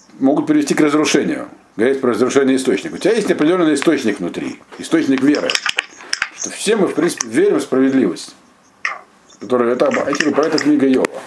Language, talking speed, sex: Russian, 150 wpm, male